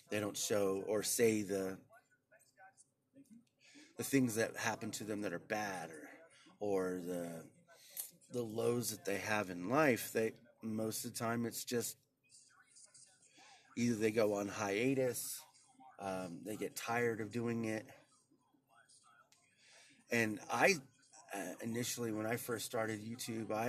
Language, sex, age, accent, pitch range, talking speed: English, male, 30-49, American, 105-130 Hz, 135 wpm